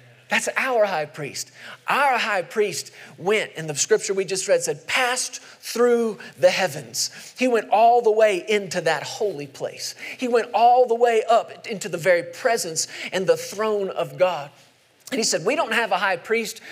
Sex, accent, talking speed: male, American, 185 wpm